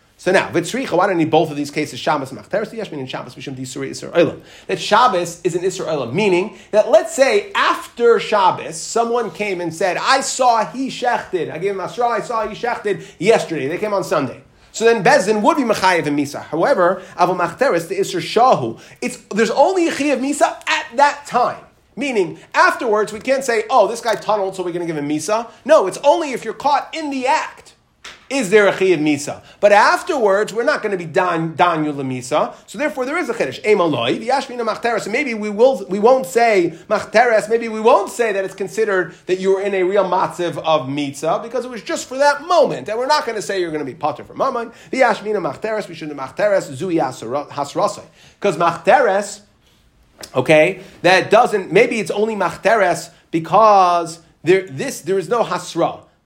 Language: English